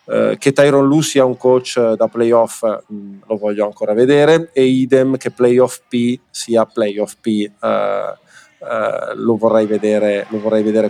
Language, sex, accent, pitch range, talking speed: Italian, male, native, 110-130 Hz, 155 wpm